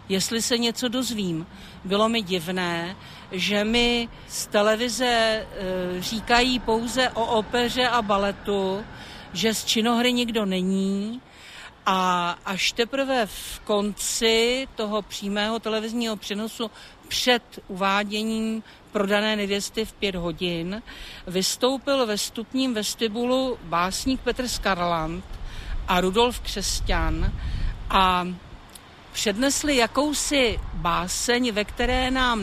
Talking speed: 100 wpm